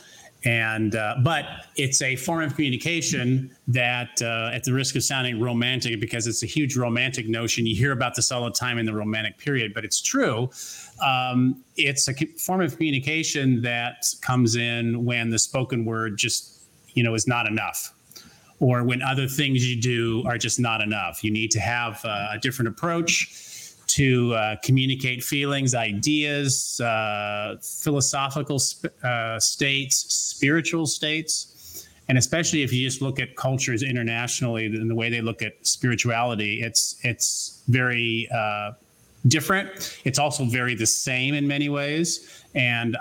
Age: 30-49